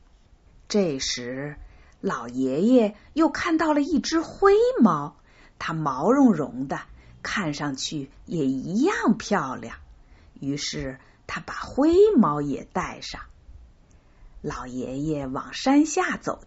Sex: female